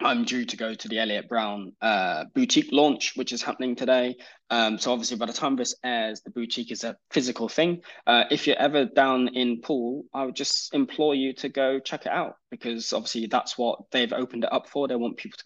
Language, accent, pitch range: English, British, 115-140 Hz